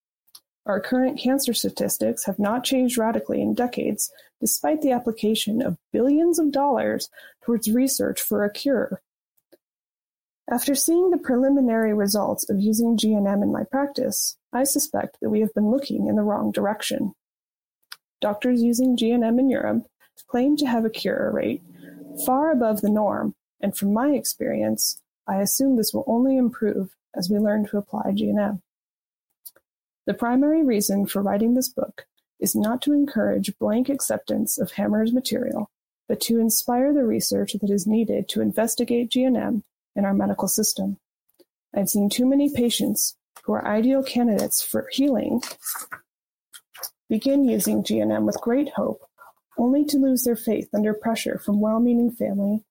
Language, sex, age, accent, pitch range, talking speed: English, female, 20-39, American, 205-260 Hz, 150 wpm